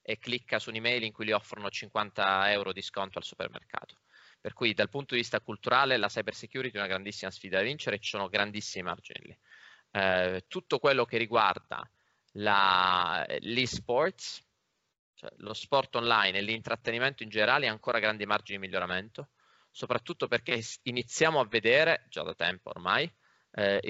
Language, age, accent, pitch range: Italian, 20-39, native, 100-125 Hz